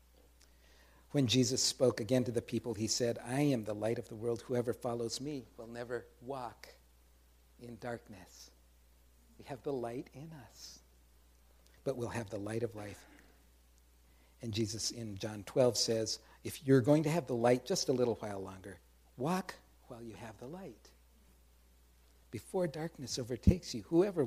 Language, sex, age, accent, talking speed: English, male, 60-79, American, 165 wpm